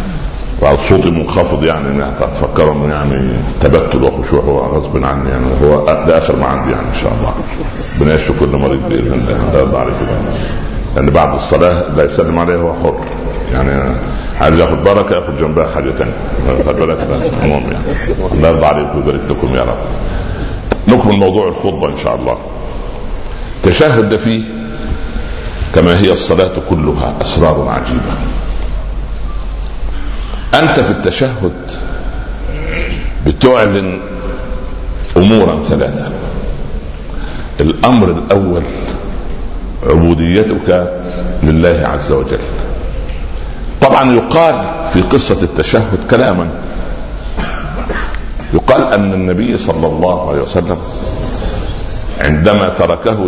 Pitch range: 70-95 Hz